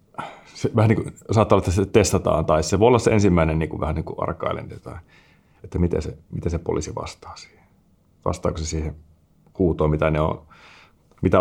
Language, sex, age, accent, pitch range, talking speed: Finnish, male, 30-49, native, 80-95 Hz, 190 wpm